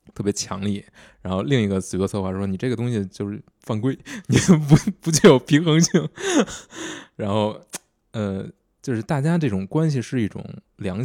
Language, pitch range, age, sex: Chinese, 95-120 Hz, 20-39, male